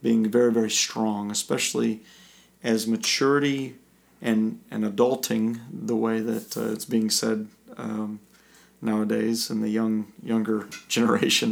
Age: 40-59